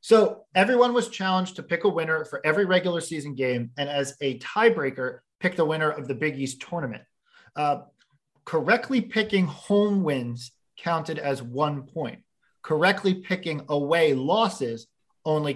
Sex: male